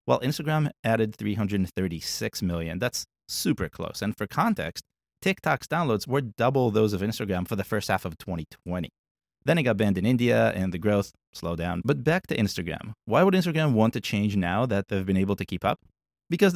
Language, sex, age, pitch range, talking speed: English, male, 30-49, 100-125 Hz, 200 wpm